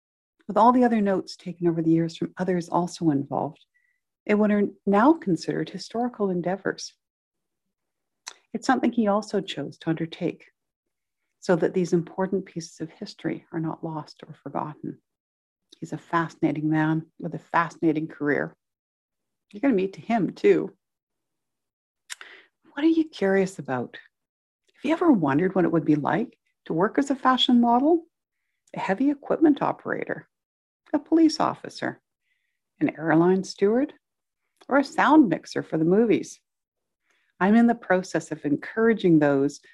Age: 60-79